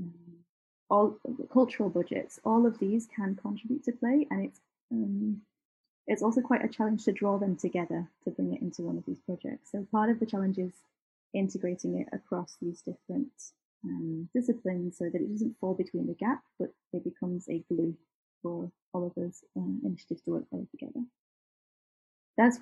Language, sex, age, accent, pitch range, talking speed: English, female, 20-39, British, 190-240 Hz, 180 wpm